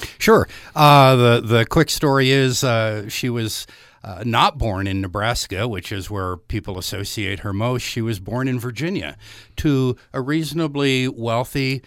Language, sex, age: English, male, 60-79